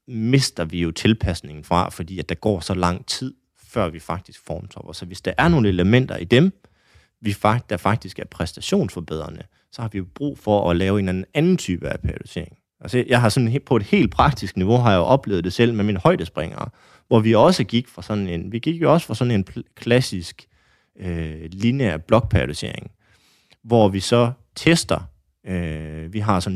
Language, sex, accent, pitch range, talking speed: Danish, male, native, 85-115 Hz, 195 wpm